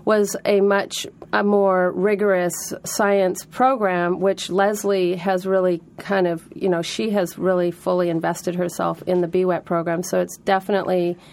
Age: 40-59